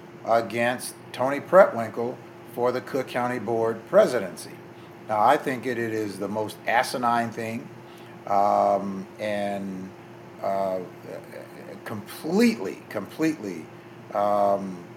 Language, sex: English, male